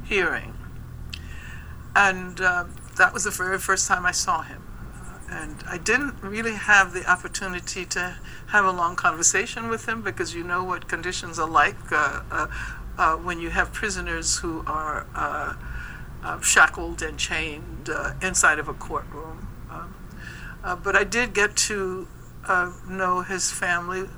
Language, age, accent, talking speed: English, 60-79, American, 160 wpm